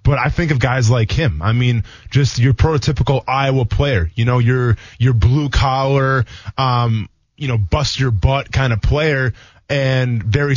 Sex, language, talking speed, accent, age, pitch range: male, English, 175 wpm, American, 20-39, 120-185 Hz